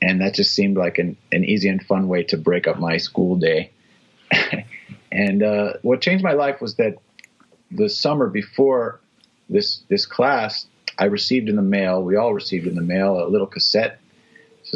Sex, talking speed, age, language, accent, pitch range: male, 185 wpm, 30-49, English, American, 95-115 Hz